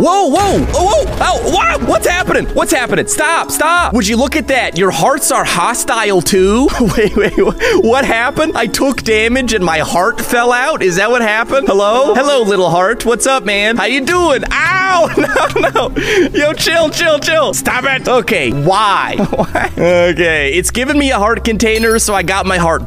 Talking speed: 180 wpm